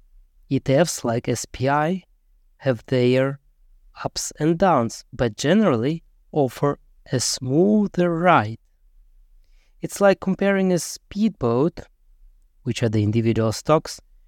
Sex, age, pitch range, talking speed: male, 20-39, 110-165 Hz, 100 wpm